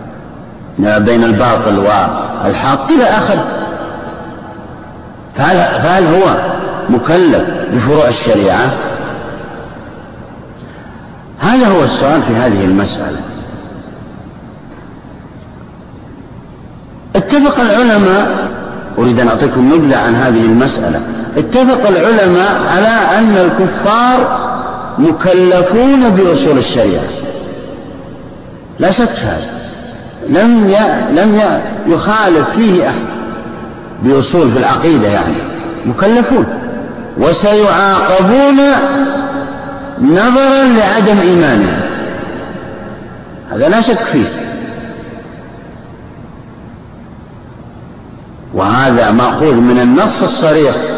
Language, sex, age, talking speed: Arabic, male, 50-69, 70 wpm